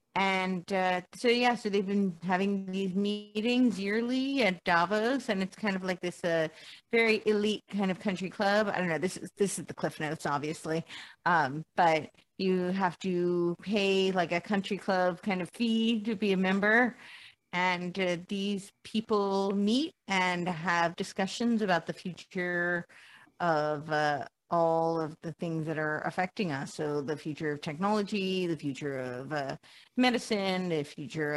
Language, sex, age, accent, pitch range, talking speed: English, female, 30-49, American, 155-195 Hz, 165 wpm